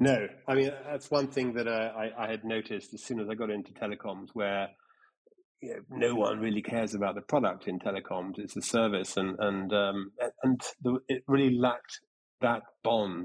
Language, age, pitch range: English, 30-49, 100-115 Hz